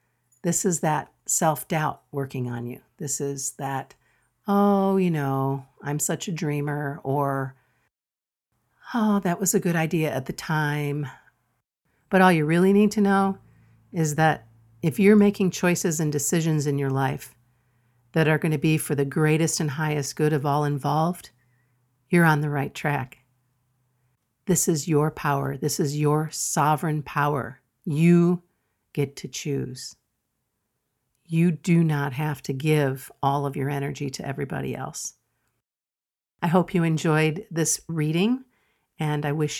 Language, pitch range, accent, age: English, 140-165 Hz, American, 50-69